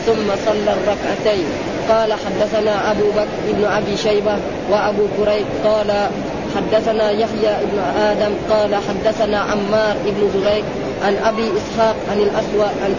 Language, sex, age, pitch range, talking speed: Arabic, female, 20-39, 210-225 Hz, 130 wpm